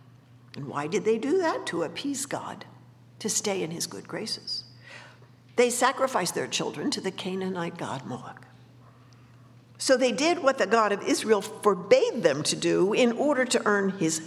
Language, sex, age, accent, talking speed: English, female, 60-79, American, 170 wpm